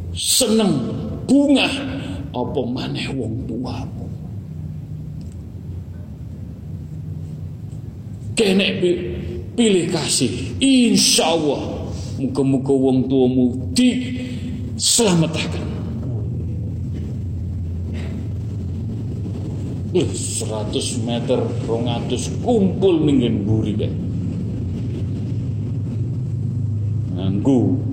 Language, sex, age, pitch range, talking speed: Malay, male, 50-69, 105-130 Hz, 55 wpm